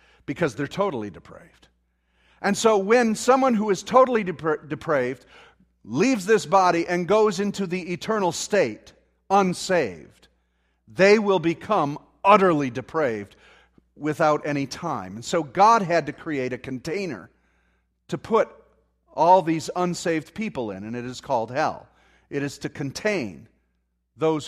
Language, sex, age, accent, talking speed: English, male, 50-69, American, 135 wpm